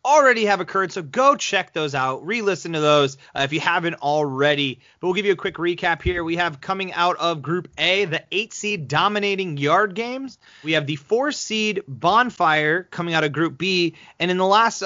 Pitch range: 155-220 Hz